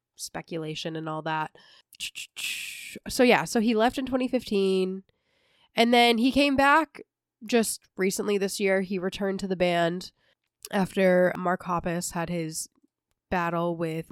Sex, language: female, English